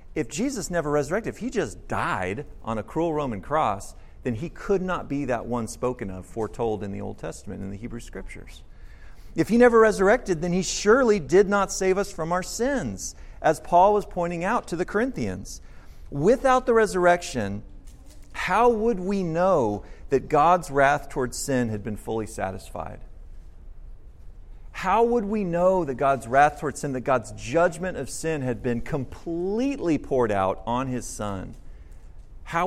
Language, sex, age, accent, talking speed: English, male, 40-59, American, 170 wpm